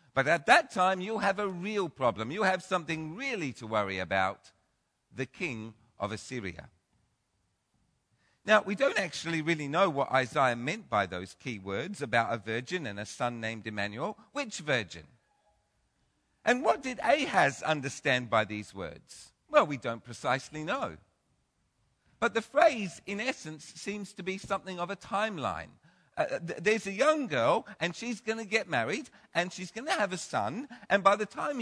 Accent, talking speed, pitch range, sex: British, 170 wpm, 135-205 Hz, male